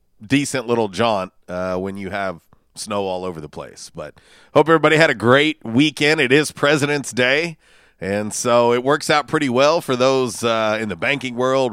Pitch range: 105-140 Hz